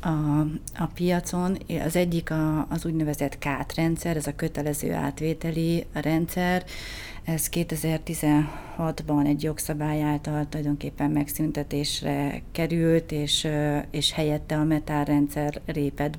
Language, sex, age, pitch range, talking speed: Hungarian, female, 30-49, 145-165 Hz, 105 wpm